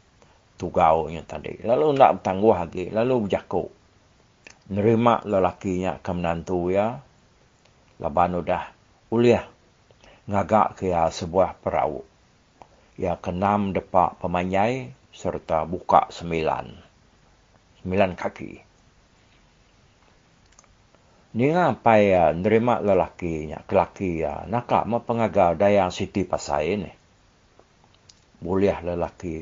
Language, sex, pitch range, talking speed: English, male, 90-110 Hz, 95 wpm